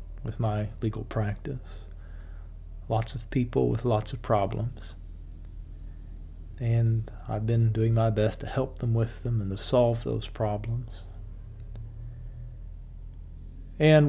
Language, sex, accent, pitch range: English, male, American, 80-115 Hz